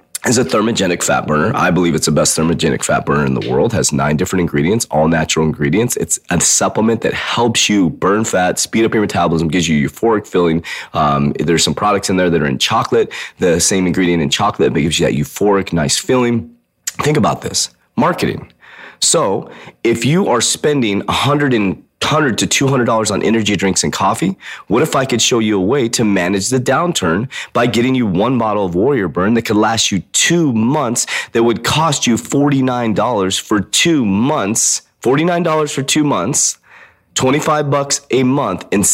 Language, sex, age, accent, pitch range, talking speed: English, male, 30-49, American, 90-130 Hz, 190 wpm